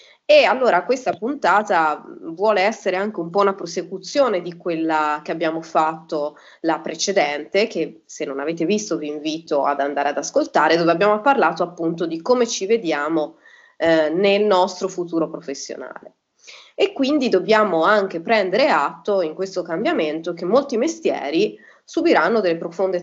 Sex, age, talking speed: female, 30-49, 150 wpm